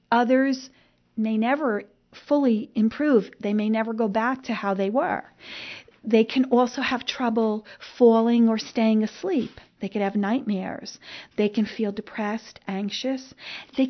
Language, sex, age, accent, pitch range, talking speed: English, female, 40-59, American, 210-255 Hz, 145 wpm